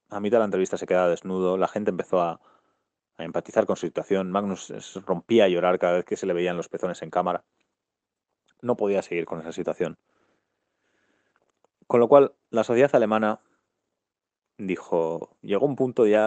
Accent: Spanish